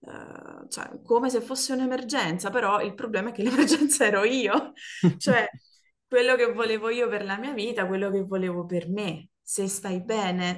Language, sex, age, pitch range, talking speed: Italian, female, 20-39, 195-230 Hz, 175 wpm